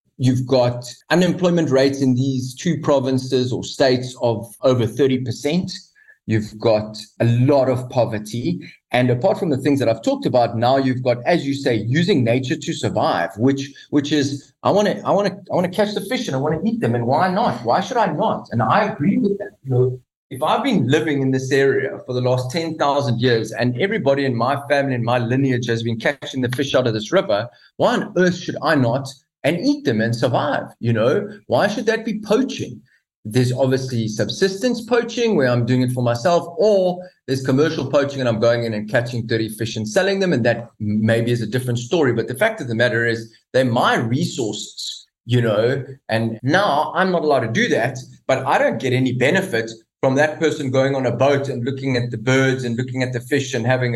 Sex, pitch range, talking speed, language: male, 120-155 Hz, 210 wpm, English